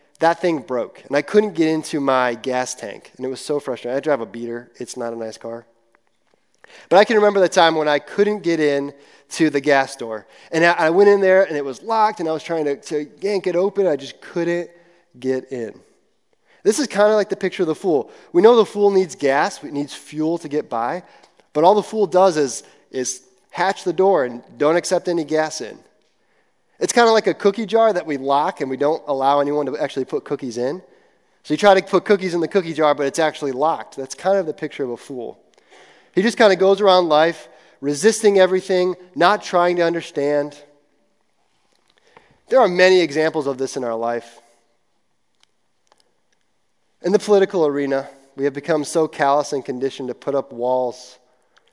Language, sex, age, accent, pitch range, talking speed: English, male, 20-39, American, 140-190 Hz, 210 wpm